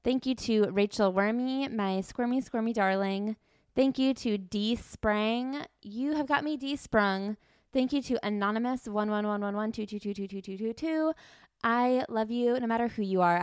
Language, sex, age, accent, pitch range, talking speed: English, female, 20-39, American, 205-255 Hz, 195 wpm